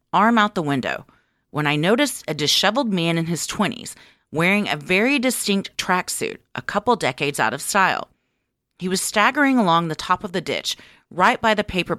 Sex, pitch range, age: female, 150-225 Hz, 40-59